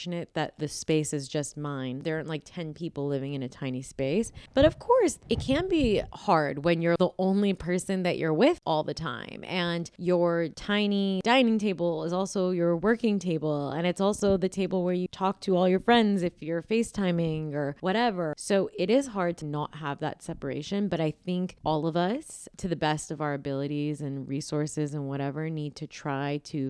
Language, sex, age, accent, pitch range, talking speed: English, female, 20-39, American, 150-190 Hz, 200 wpm